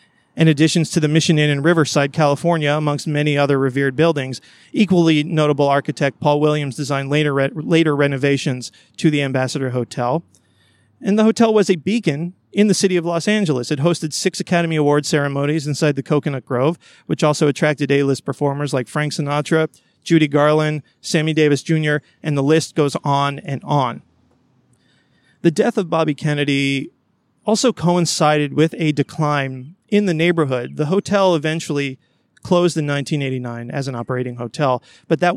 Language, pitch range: English, 140-165 Hz